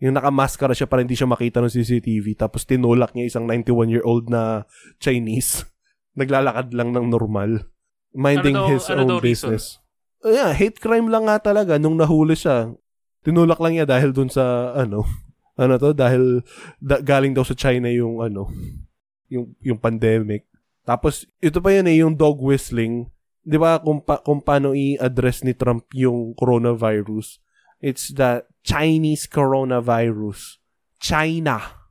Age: 20-39